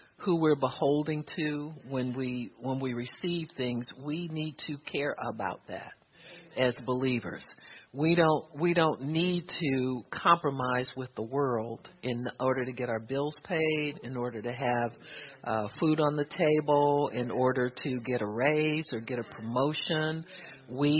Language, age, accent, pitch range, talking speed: English, 50-69, American, 125-165 Hz, 155 wpm